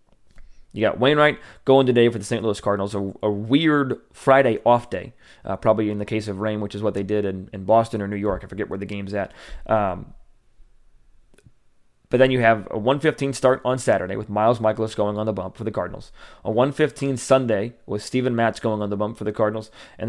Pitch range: 105-120 Hz